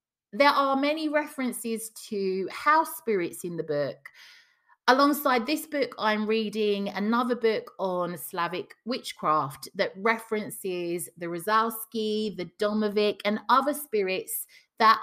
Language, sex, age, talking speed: English, female, 30-49, 120 wpm